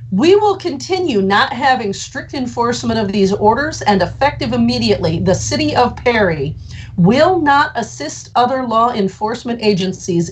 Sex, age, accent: female, 40-59, American